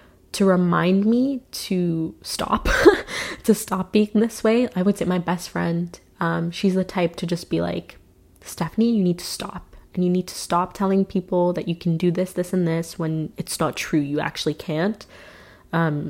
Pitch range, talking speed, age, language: 165-195 Hz, 195 wpm, 20-39, English